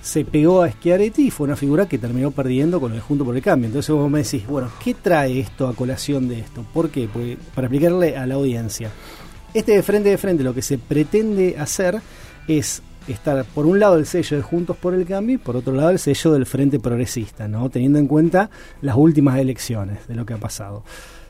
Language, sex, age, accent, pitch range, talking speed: Spanish, male, 30-49, Argentinian, 125-170 Hz, 230 wpm